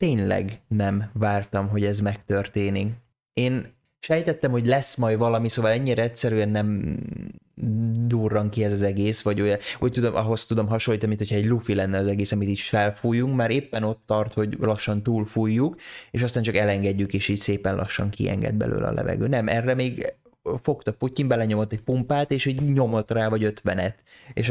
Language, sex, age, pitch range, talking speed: Hungarian, male, 20-39, 100-125 Hz, 175 wpm